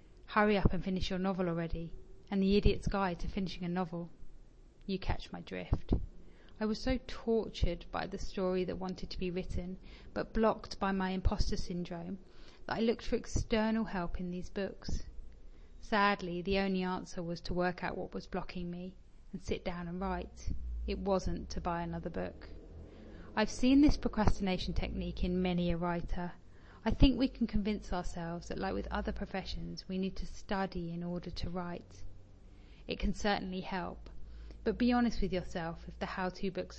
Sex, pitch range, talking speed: female, 170-200 Hz, 180 wpm